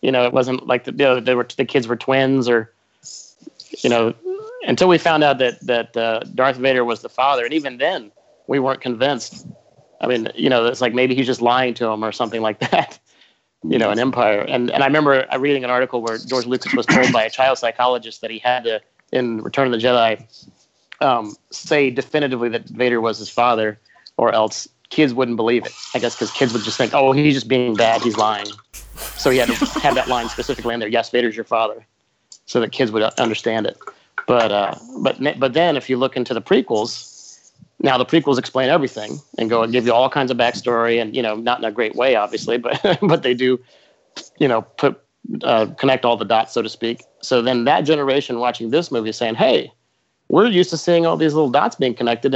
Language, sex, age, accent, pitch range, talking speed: English, male, 30-49, American, 115-135 Hz, 225 wpm